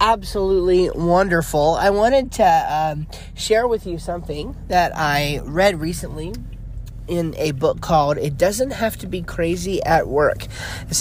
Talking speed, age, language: 145 wpm, 30-49, English